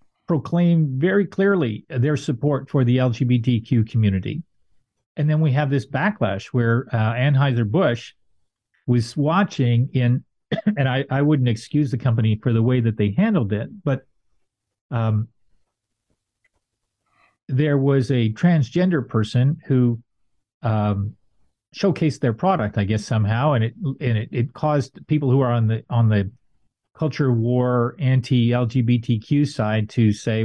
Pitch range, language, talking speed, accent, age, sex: 115-145 Hz, English, 140 wpm, American, 50-69, male